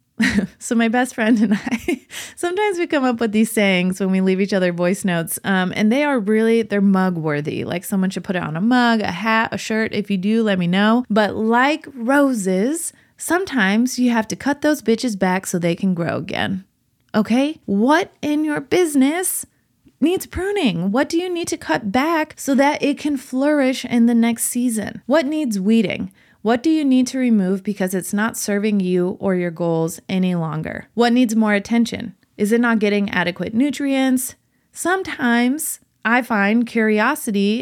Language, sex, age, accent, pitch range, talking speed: English, female, 20-39, American, 190-250 Hz, 190 wpm